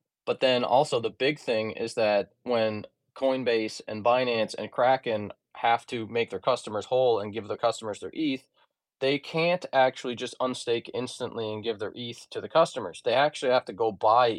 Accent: American